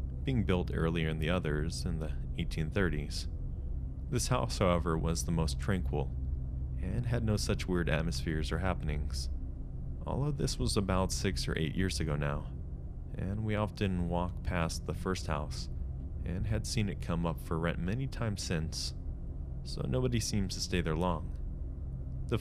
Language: English